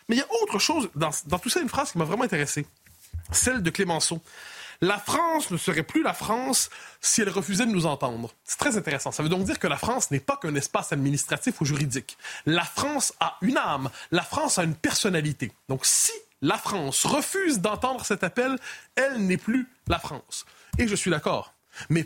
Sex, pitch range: male, 165-245 Hz